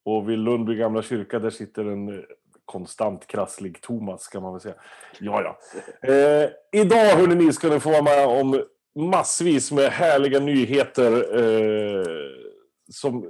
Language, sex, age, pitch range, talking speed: Swedish, male, 30-49, 115-160 Hz, 125 wpm